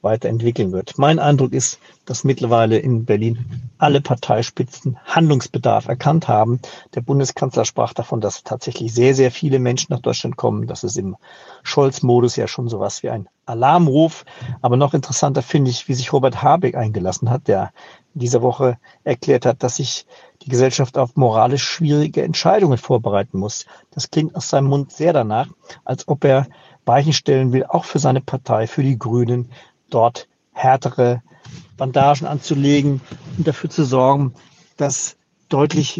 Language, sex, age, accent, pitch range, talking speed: German, male, 50-69, German, 125-150 Hz, 155 wpm